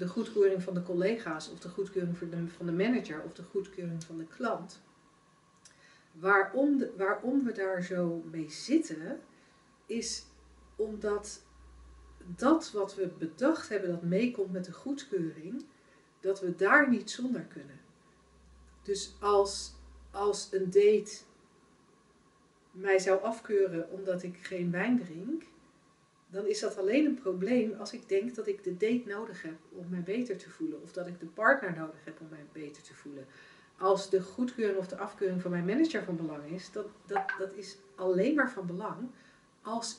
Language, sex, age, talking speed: Dutch, female, 40-59, 160 wpm